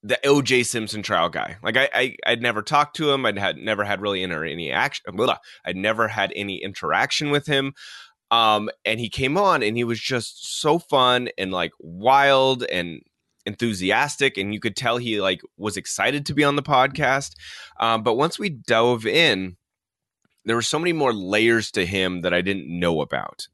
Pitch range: 95-130 Hz